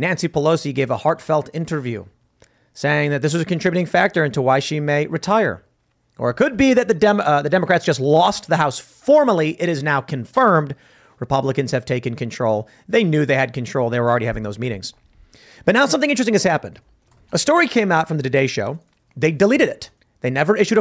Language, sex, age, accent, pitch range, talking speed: English, male, 30-49, American, 140-195 Hz, 210 wpm